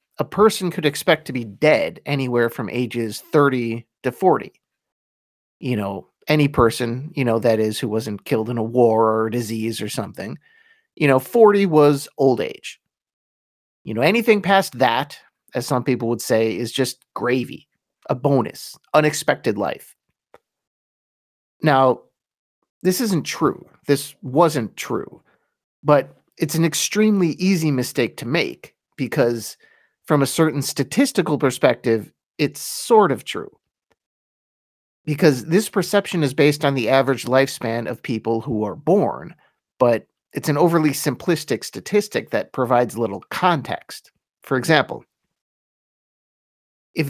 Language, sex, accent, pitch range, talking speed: English, male, American, 115-165 Hz, 135 wpm